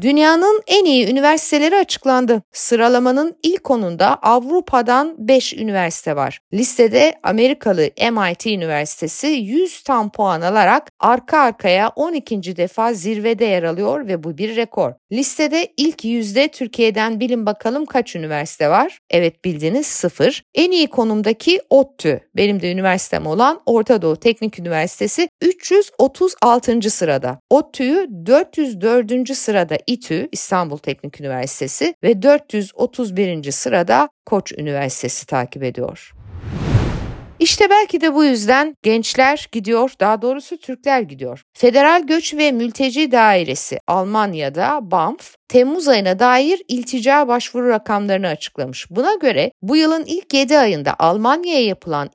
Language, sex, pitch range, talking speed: Turkish, female, 190-285 Hz, 120 wpm